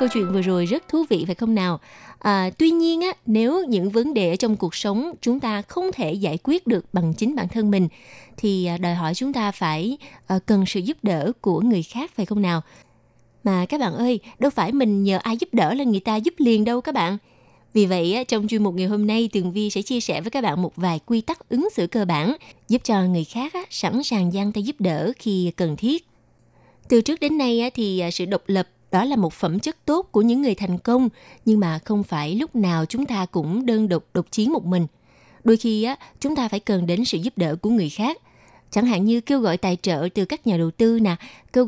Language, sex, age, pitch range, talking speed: Vietnamese, female, 20-39, 185-245 Hz, 240 wpm